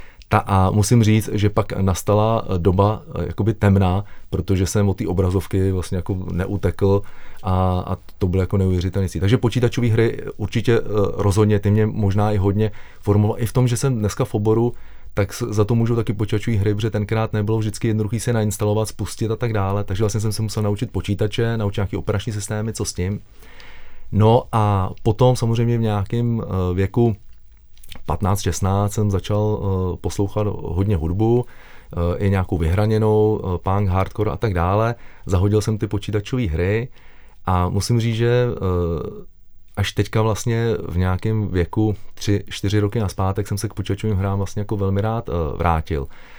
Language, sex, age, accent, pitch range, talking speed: Czech, male, 30-49, native, 95-110 Hz, 170 wpm